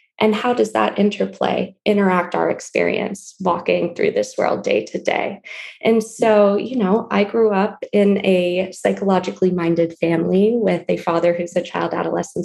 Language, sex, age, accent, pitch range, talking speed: English, female, 20-39, American, 180-230 Hz, 165 wpm